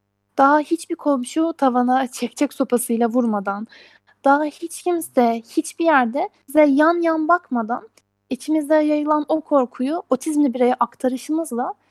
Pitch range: 210-295 Hz